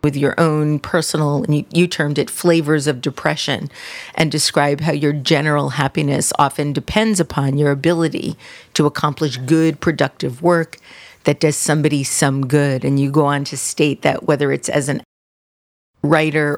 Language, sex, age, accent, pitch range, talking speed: English, female, 40-59, American, 140-155 Hz, 160 wpm